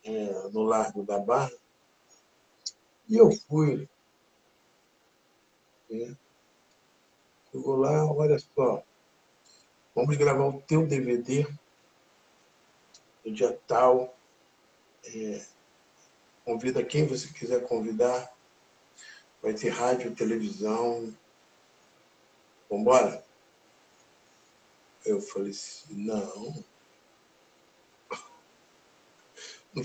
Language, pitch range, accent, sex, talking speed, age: Portuguese, 125-195 Hz, Brazilian, male, 80 wpm, 60-79